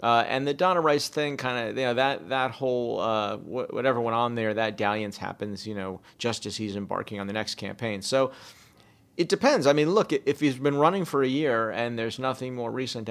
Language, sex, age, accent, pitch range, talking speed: English, male, 40-59, American, 105-130 Hz, 230 wpm